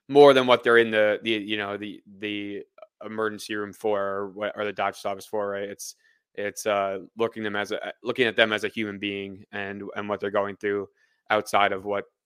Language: English